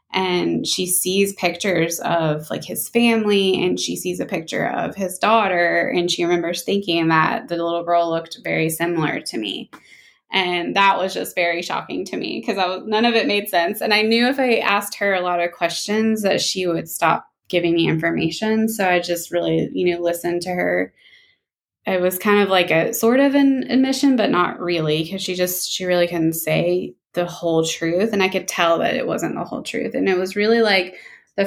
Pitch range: 170-195 Hz